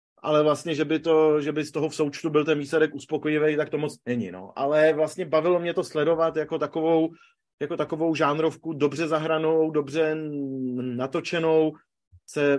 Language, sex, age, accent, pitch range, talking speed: Czech, male, 30-49, native, 135-155 Hz, 150 wpm